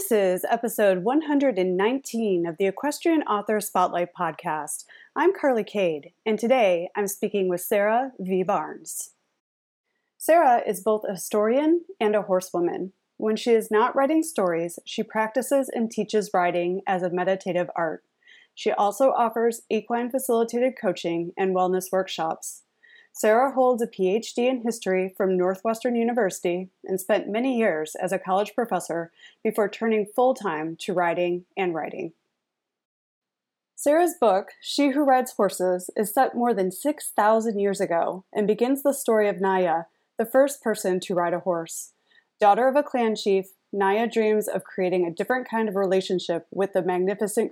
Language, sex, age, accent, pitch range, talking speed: English, female, 30-49, American, 185-245 Hz, 150 wpm